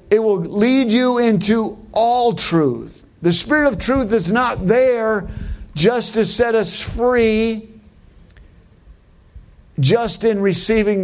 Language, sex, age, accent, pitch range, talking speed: English, male, 50-69, American, 145-215 Hz, 120 wpm